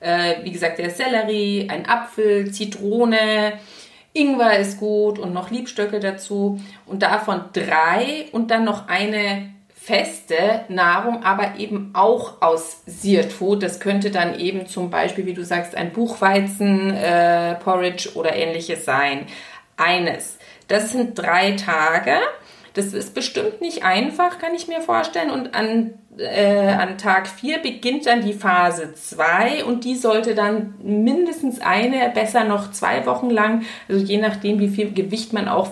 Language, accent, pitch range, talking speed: German, German, 185-225 Hz, 150 wpm